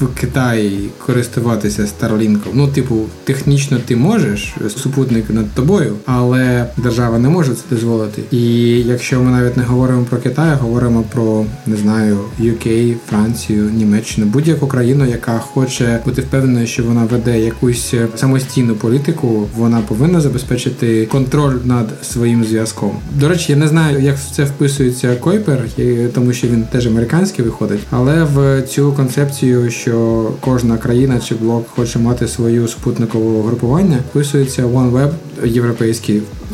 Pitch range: 115-140 Hz